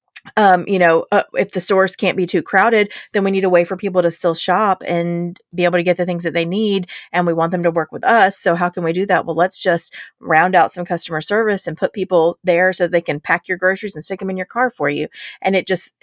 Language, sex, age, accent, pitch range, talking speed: English, female, 30-49, American, 170-195 Hz, 275 wpm